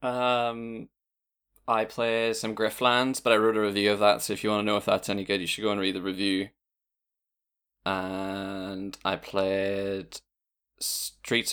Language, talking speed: English, 170 wpm